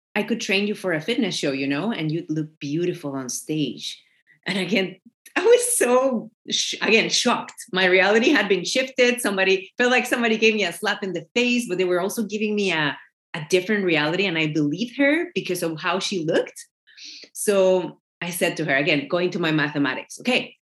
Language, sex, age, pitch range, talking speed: English, female, 30-49, 150-210 Hz, 205 wpm